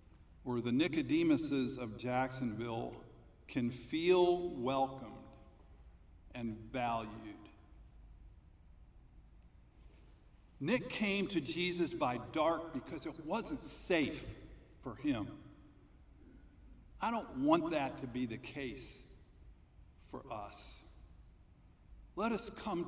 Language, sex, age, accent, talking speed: English, male, 50-69, American, 90 wpm